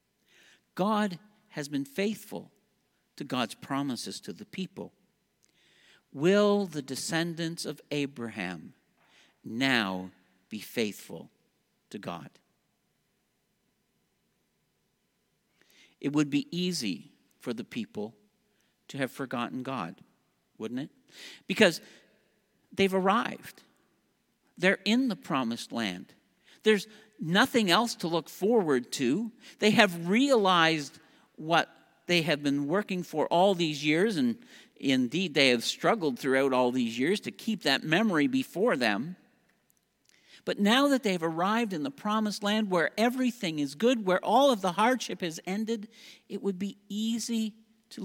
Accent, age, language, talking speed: American, 60-79, English, 125 wpm